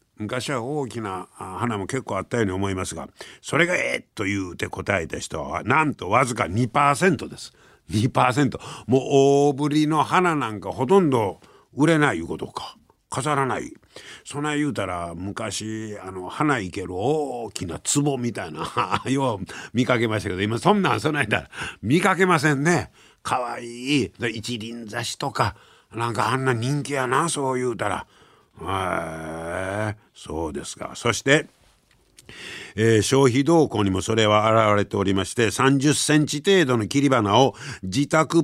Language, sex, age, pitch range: Japanese, male, 50-69, 100-145 Hz